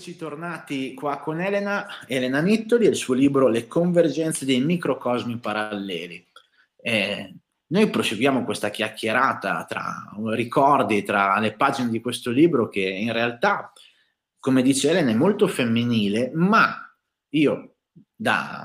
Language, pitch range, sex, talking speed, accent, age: Italian, 115-160 Hz, male, 130 wpm, native, 30-49